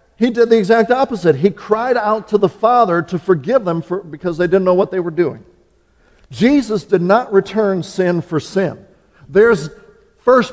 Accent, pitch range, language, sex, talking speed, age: American, 150-215 Hz, English, male, 180 wpm, 50-69